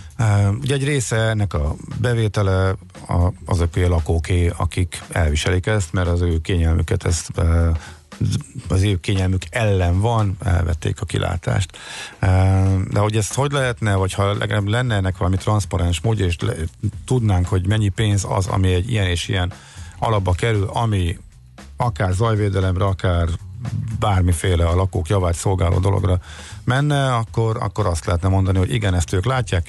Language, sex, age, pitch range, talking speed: Hungarian, male, 50-69, 90-110 Hz, 140 wpm